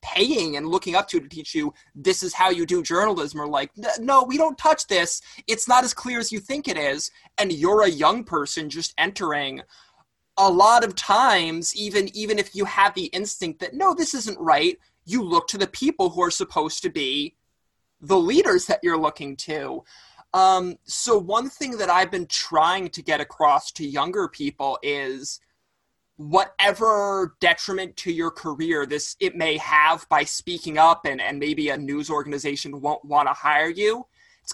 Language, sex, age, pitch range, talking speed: English, male, 20-39, 155-250 Hz, 190 wpm